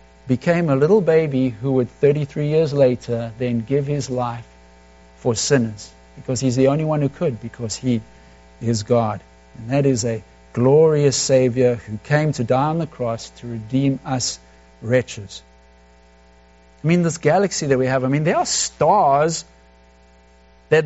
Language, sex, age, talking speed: English, male, 60-79, 160 wpm